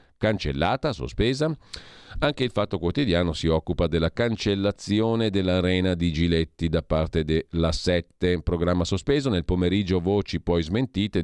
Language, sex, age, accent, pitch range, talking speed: Italian, male, 40-59, native, 80-100 Hz, 130 wpm